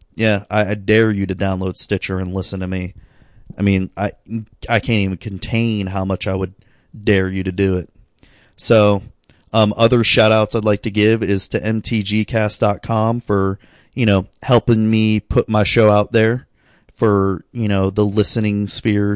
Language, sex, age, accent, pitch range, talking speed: English, male, 20-39, American, 95-115 Hz, 175 wpm